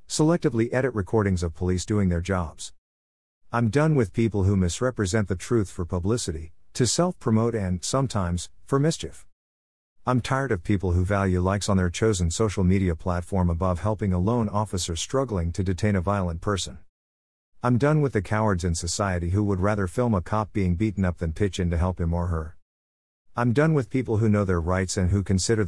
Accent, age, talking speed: American, 50-69, 195 wpm